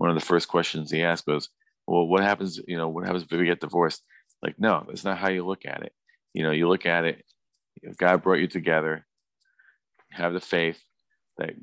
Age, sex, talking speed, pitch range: 40-59, male, 225 wpm, 80-90 Hz